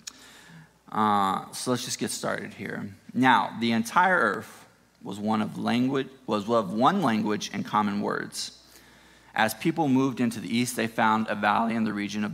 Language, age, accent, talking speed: English, 30-49, American, 160 wpm